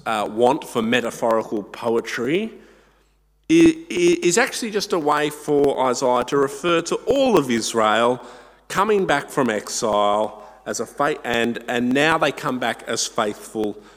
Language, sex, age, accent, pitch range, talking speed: English, male, 50-69, Australian, 115-155 Hz, 145 wpm